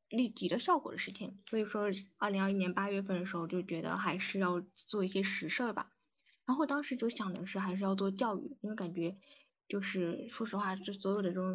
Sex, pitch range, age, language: female, 185-210 Hz, 10-29, Chinese